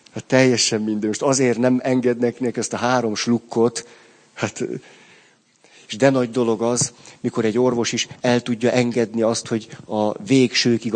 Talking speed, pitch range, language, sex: 160 wpm, 105-125 Hz, Hungarian, male